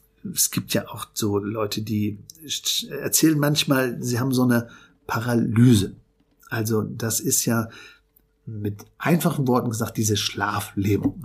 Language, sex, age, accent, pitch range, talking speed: German, male, 50-69, German, 110-140 Hz, 130 wpm